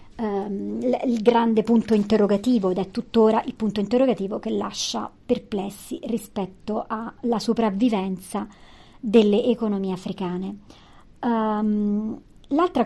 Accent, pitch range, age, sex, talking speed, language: native, 210-240 Hz, 40-59, male, 105 wpm, Italian